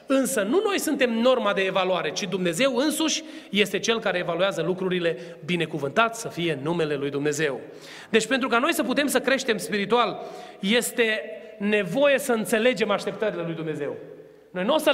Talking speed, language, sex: 165 wpm, Romanian, male